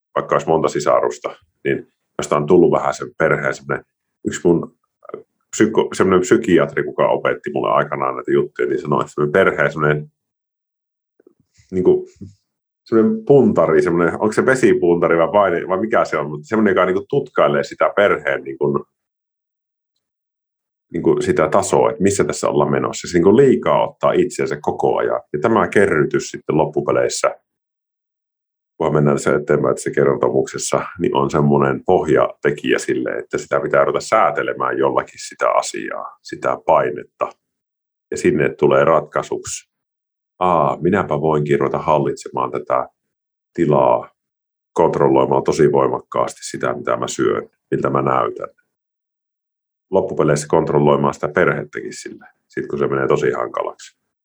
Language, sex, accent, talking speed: Finnish, male, native, 125 wpm